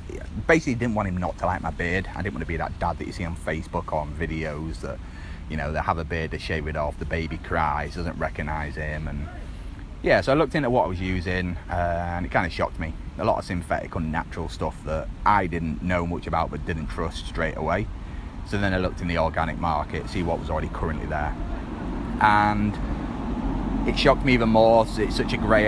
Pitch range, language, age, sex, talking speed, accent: 80-100 Hz, English, 30-49, male, 230 wpm, British